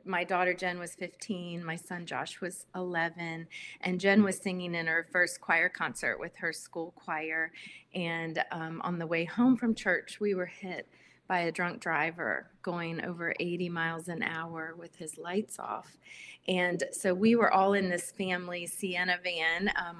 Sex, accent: female, American